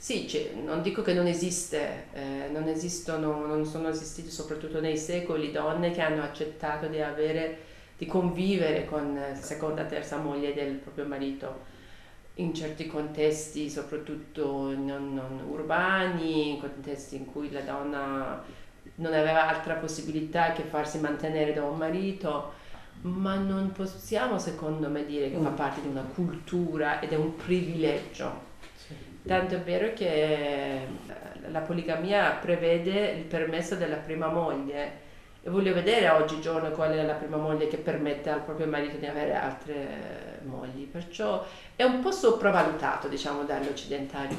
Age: 40-59